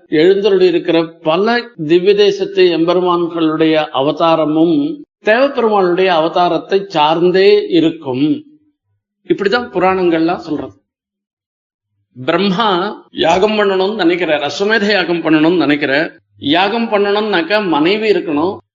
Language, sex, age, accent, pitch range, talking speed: Tamil, male, 50-69, native, 165-240 Hz, 85 wpm